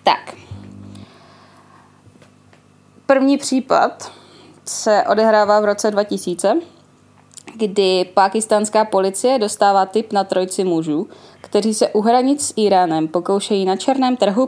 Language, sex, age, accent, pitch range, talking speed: Czech, female, 20-39, native, 195-245 Hz, 110 wpm